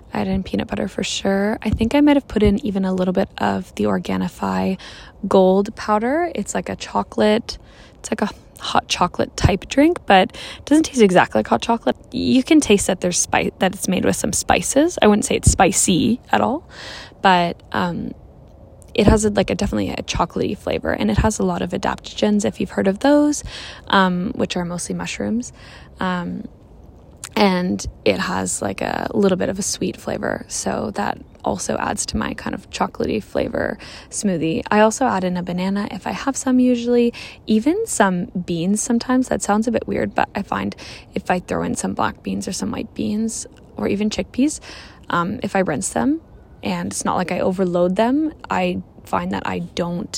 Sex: female